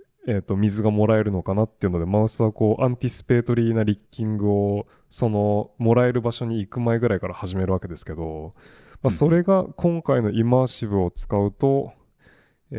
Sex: male